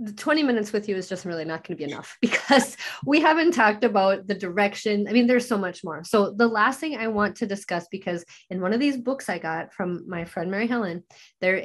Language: English